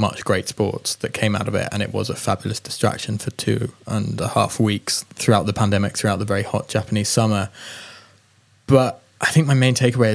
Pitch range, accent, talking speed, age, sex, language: 100-115 Hz, British, 205 wpm, 20-39, male, English